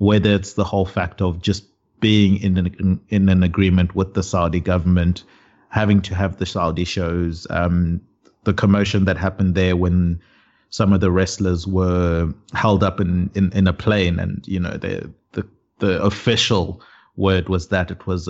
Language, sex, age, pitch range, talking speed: English, male, 30-49, 90-100 Hz, 175 wpm